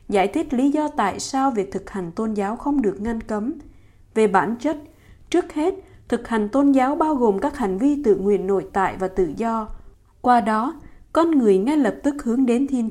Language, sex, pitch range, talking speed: Vietnamese, female, 200-275 Hz, 215 wpm